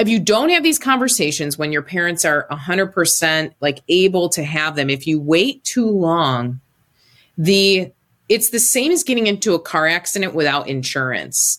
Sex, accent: female, American